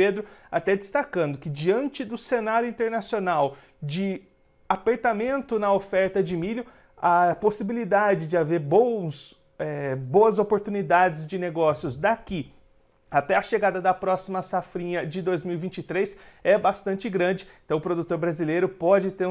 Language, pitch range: Portuguese, 160-195 Hz